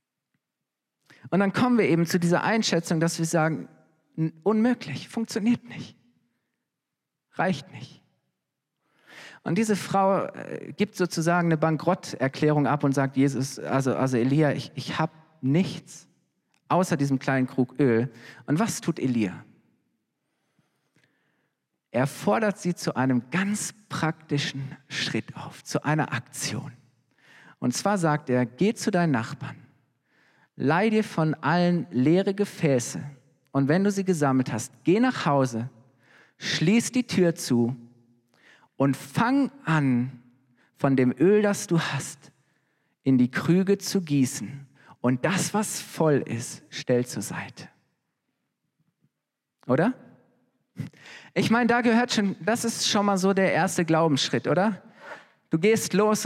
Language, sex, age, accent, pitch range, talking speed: German, male, 50-69, German, 135-195 Hz, 130 wpm